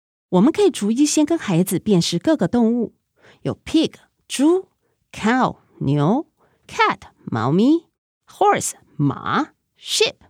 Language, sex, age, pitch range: Chinese, female, 30-49, 170-280 Hz